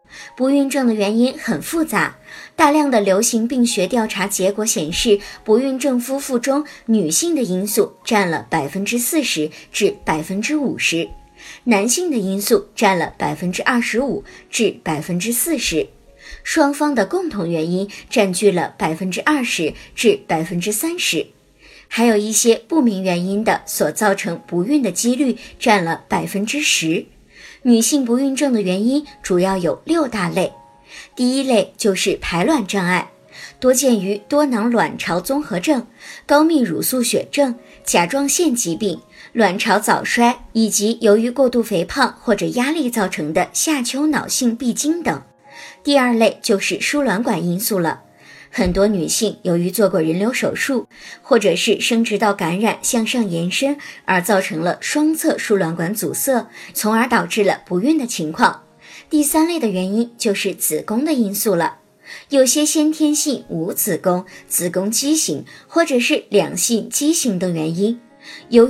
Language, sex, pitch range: Chinese, male, 190-270 Hz